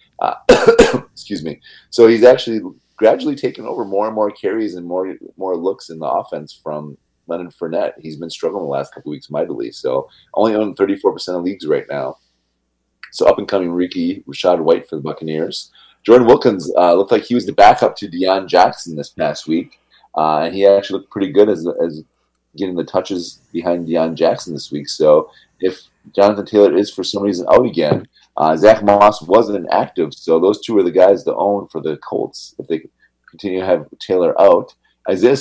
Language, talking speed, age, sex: English, 200 wpm, 30-49, male